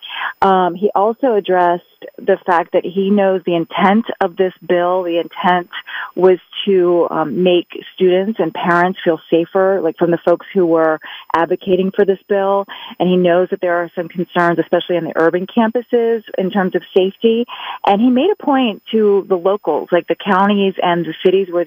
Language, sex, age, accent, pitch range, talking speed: English, female, 30-49, American, 165-195 Hz, 185 wpm